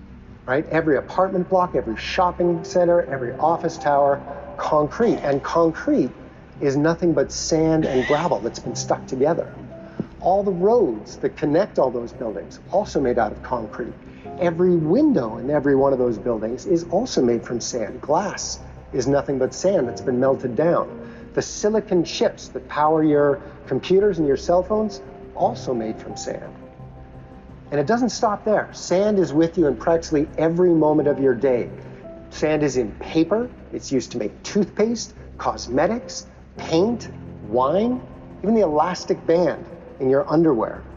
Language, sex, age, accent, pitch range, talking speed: English, male, 50-69, American, 120-180 Hz, 160 wpm